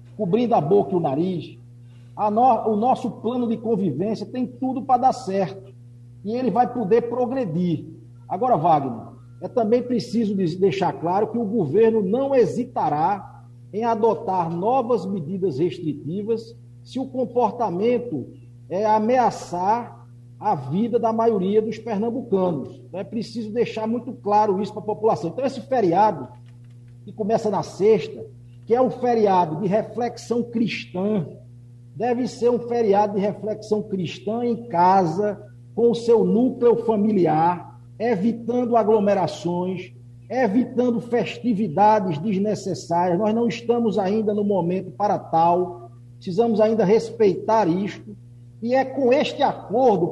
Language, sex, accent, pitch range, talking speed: Portuguese, male, Brazilian, 170-230 Hz, 135 wpm